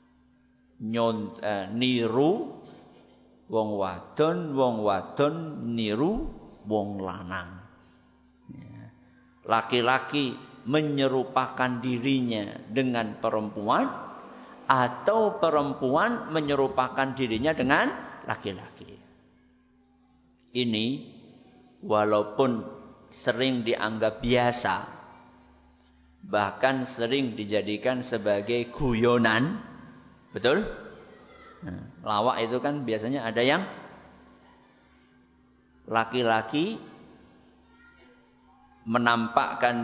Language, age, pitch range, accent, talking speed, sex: Indonesian, 50-69, 85-130 Hz, native, 45 wpm, male